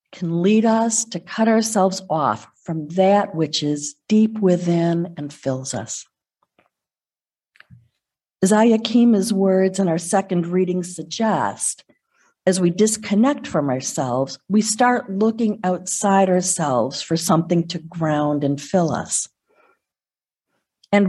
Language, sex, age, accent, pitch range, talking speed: English, female, 50-69, American, 160-210 Hz, 120 wpm